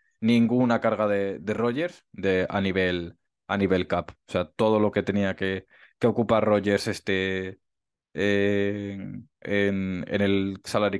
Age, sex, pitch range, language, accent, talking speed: 20-39, male, 95-115 Hz, Spanish, Spanish, 145 wpm